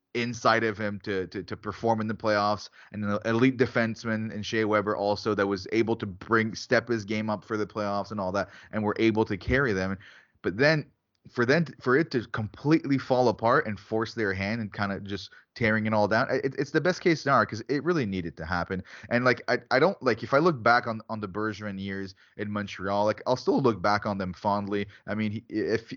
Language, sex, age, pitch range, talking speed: English, male, 20-39, 100-120 Hz, 230 wpm